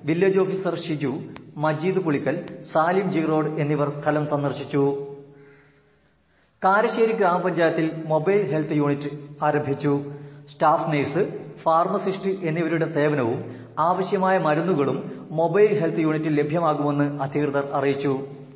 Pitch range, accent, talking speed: 140-165 Hz, native, 90 wpm